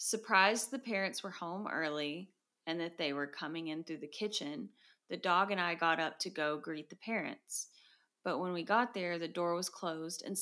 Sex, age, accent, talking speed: female, 30-49, American, 205 wpm